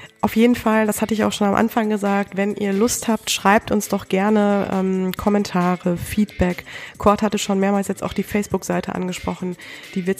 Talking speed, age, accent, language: 195 wpm, 20-39, German, German